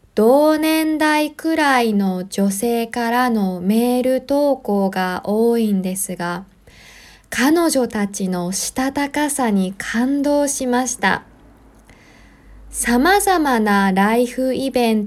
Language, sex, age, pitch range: Japanese, female, 20-39, 205-280 Hz